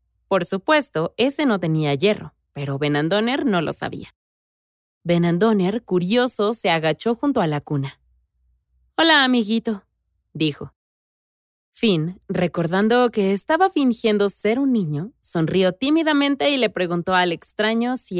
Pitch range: 155-225 Hz